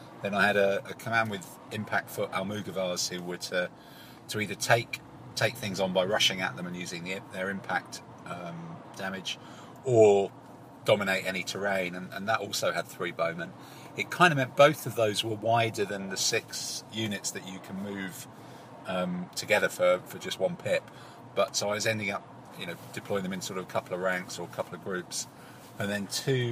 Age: 40-59